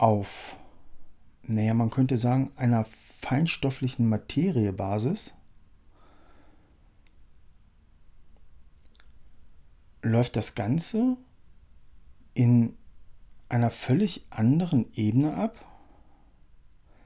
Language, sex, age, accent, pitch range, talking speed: English, male, 50-69, German, 95-125 Hz, 60 wpm